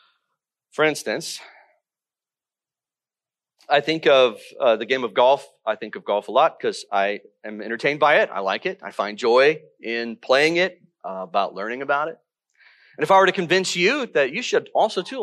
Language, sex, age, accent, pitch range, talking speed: English, male, 40-59, American, 150-225 Hz, 190 wpm